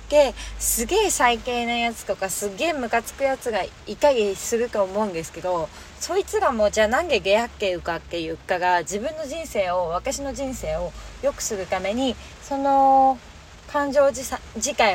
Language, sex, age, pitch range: Japanese, female, 20-39, 180-265 Hz